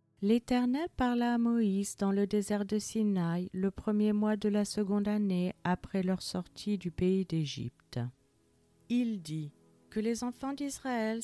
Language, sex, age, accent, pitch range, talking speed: French, female, 40-59, French, 180-220 Hz, 150 wpm